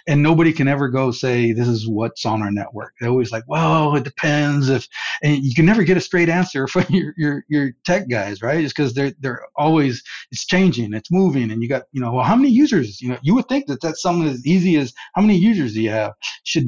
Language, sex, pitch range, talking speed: English, male, 115-155 Hz, 250 wpm